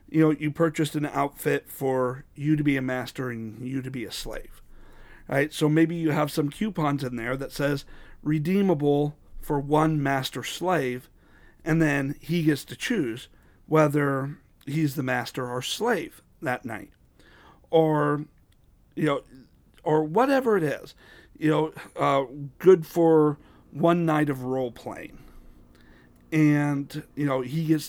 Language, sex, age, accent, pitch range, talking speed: English, male, 40-59, American, 130-160 Hz, 150 wpm